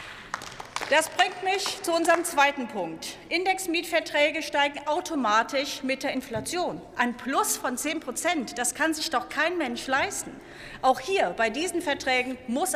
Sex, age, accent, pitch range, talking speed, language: female, 40-59, German, 250-330 Hz, 145 wpm, German